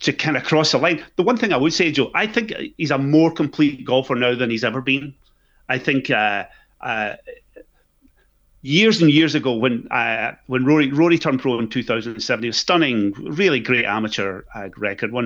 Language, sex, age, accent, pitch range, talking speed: English, male, 30-49, British, 110-135 Hz, 210 wpm